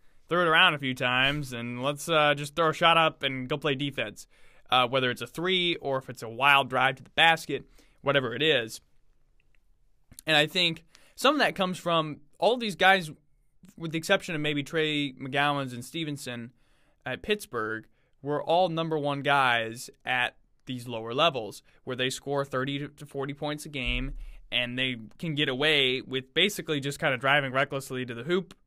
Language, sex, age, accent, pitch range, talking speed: English, male, 20-39, American, 130-160 Hz, 190 wpm